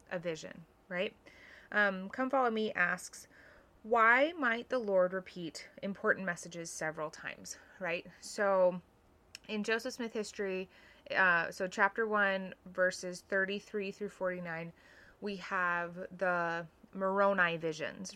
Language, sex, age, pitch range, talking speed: English, female, 20-39, 180-215 Hz, 120 wpm